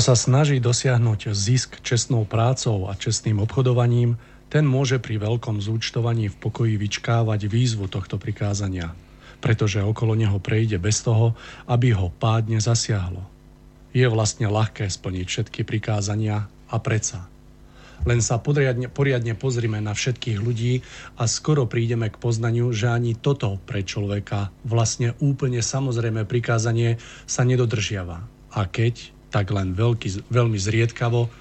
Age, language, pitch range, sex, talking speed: 40-59, Slovak, 105-125 Hz, male, 130 wpm